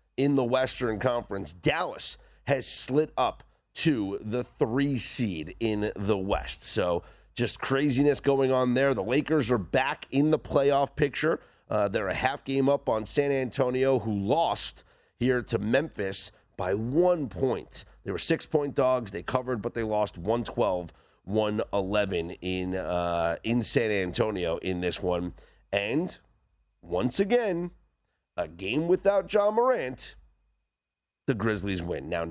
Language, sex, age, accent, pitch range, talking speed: English, male, 30-49, American, 105-155 Hz, 135 wpm